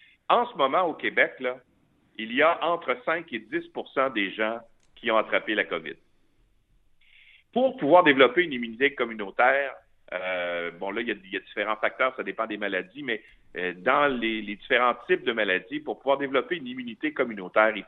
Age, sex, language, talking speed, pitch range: 50-69, male, French, 180 wpm, 105-150 Hz